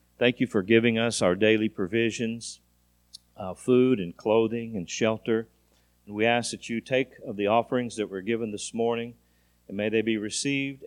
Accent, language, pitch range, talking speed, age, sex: American, English, 85-115 Hz, 180 wpm, 40-59, male